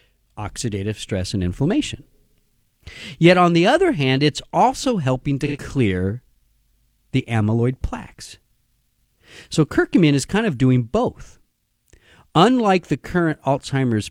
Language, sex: English, male